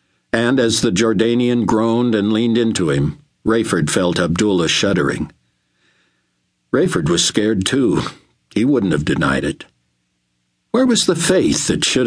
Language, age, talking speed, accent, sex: English, 60-79, 140 wpm, American, male